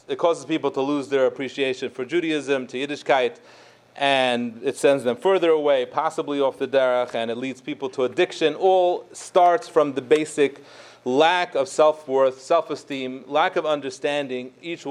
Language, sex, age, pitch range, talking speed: English, male, 30-49, 135-165 Hz, 160 wpm